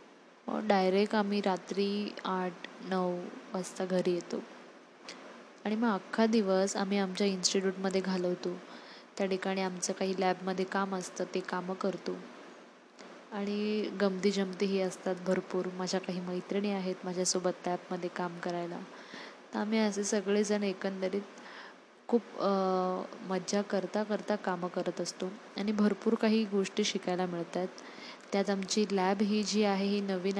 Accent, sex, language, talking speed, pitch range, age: native, female, Marathi, 135 wpm, 185-215 Hz, 20-39